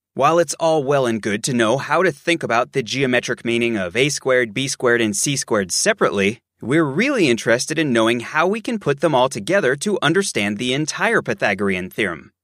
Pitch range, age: 120-180 Hz, 30-49